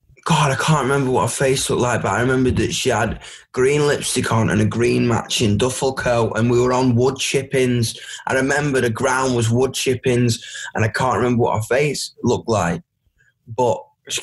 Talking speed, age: 205 wpm, 10-29